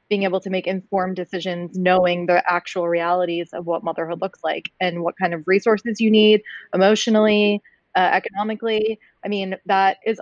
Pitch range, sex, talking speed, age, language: 180-215 Hz, female, 170 wpm, 20-39, English